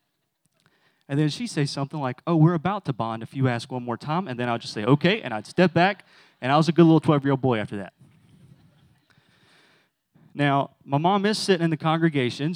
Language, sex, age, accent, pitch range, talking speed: English, male, 30-49, American, 125-160 Hz, 215 wpm